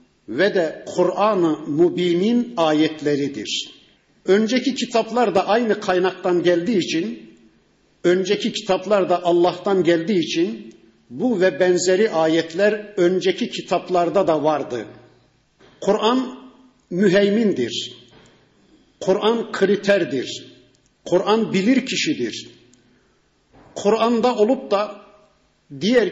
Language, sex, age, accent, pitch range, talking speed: Turkish, male, 50-69, native, 170-215 Hz, 85 wpm